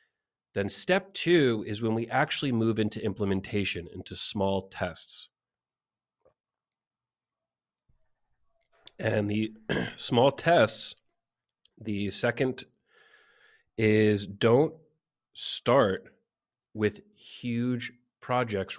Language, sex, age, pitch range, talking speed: English, male, 30-49, 100-140 Hz, 80 wpm